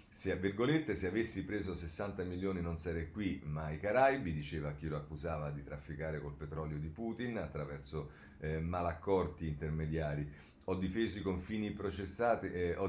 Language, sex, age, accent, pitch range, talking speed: Italian, male, 40-59, native, 80-100 Hz, 150 wpm